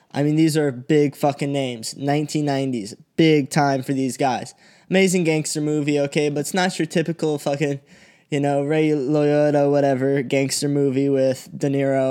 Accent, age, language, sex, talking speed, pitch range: American, 10-29, English, male, 165 wpm, 140-170 Hz